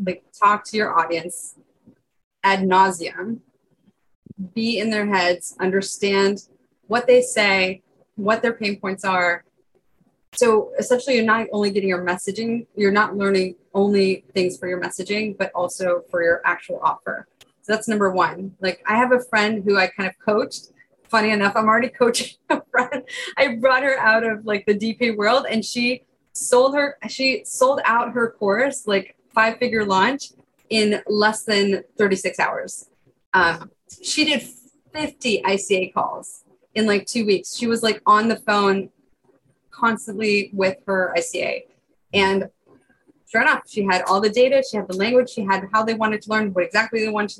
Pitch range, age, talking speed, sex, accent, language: 190-230 Hz, 20-39, 170 wpm, female, American, English